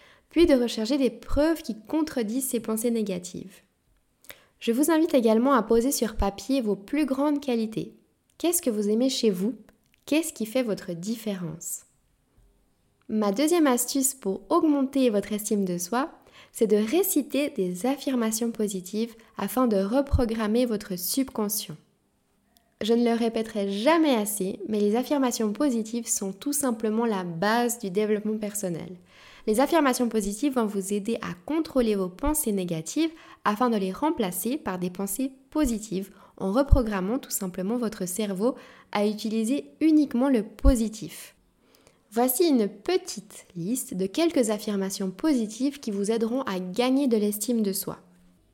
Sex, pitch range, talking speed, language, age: female, 205-265 Hz, 145 wpm, French, 20-39